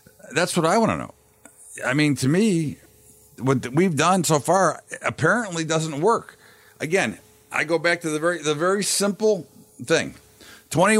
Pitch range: 130-170 Hz